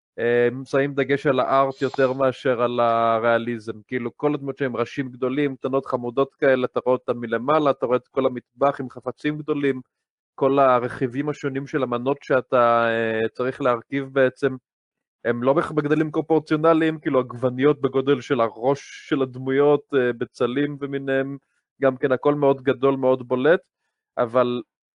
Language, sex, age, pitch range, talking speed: Hebrew, male, 20-39, 130-155 Hz, 150 wpm